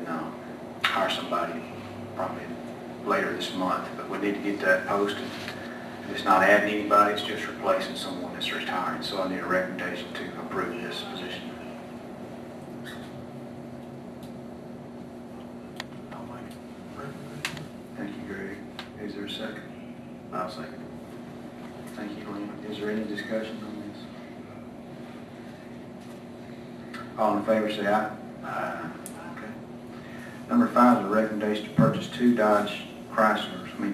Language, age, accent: English, 40-59, American